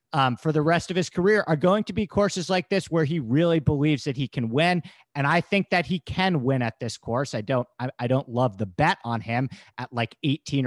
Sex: male